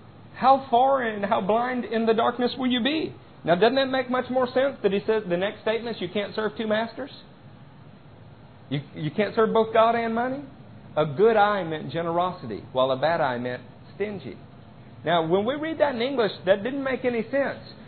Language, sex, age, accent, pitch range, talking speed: English, male, 50-69, American, 145-220 Hz, 205 wpm